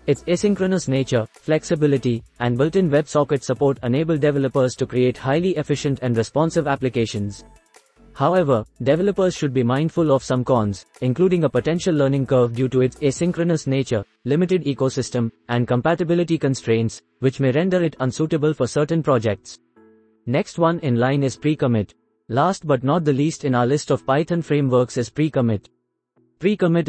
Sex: male